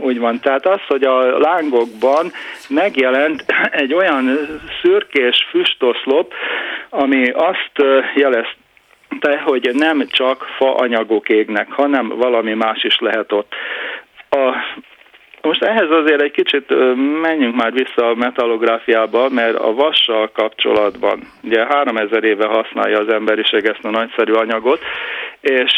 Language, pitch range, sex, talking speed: Hungarian, 110-135 Hz, male, 125 wpm